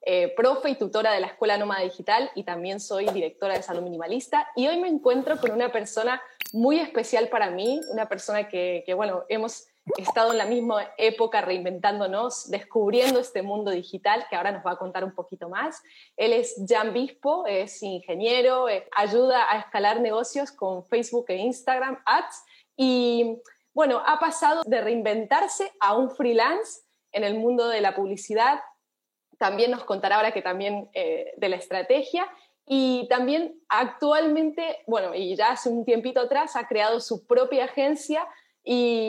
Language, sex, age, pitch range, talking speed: Spanish, female, 20-39, 205-265 Hz, 165 wpm